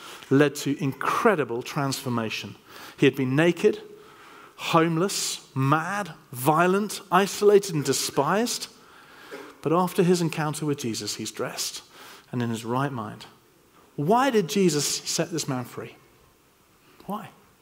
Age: 40-59